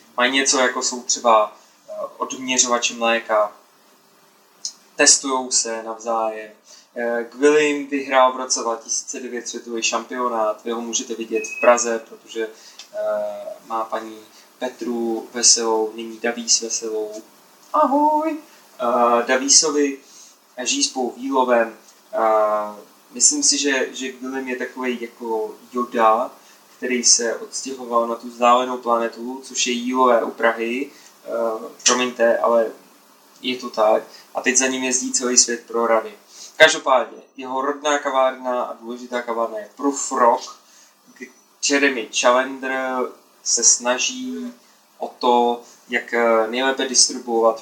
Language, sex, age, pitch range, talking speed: Czech, male, 20-39, 115-130 Hz, 110 wpm